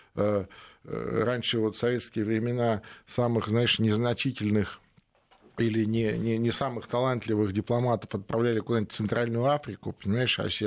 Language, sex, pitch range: Russian, male, 105-145 Hz